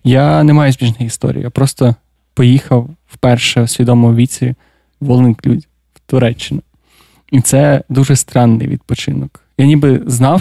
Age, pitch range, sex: 20-39, 120-135 Hz, male